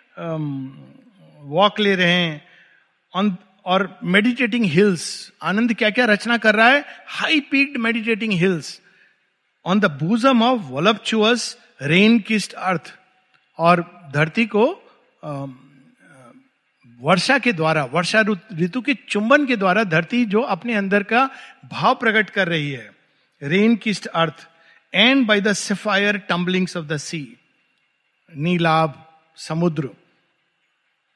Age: 50-69